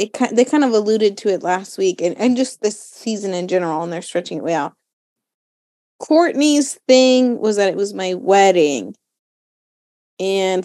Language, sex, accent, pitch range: English, female, American, 190-245 Hz